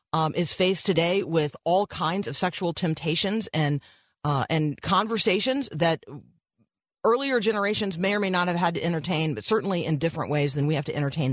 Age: 40-59